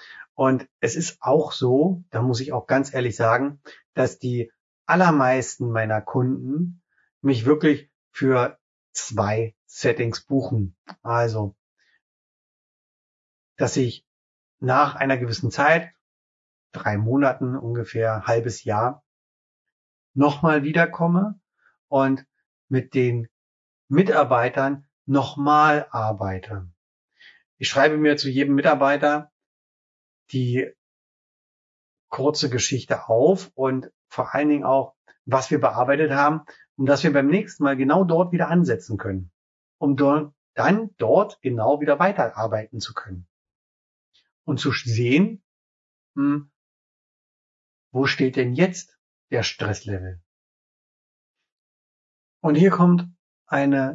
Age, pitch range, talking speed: 30-49, 100-145 Hz, 105 wpm